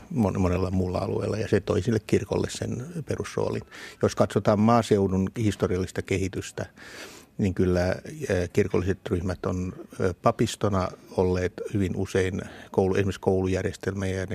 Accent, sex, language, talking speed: native, male, Finnish, 110 wpm